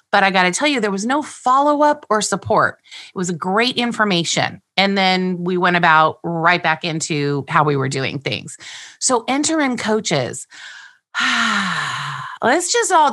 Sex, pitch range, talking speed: female, 170-230 Hz, 160 wpm